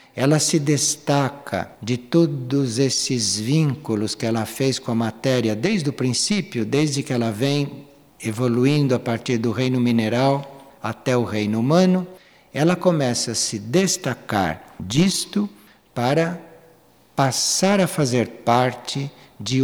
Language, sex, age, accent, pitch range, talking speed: Portuguese, male, 60-79, Brazilian, 115-155 Hz, 130 wpm